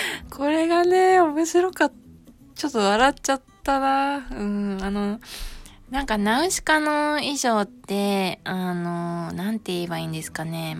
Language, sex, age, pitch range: Japanese, female, 20-39, 165-215 Hz